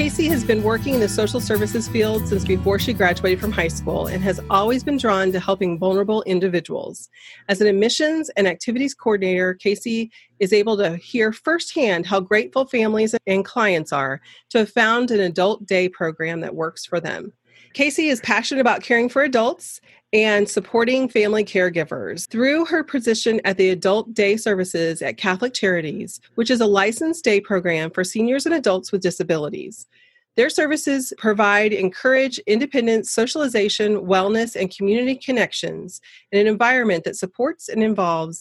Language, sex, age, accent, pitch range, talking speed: English, female, 30-49, American, 190-245 Hz, 165 wpm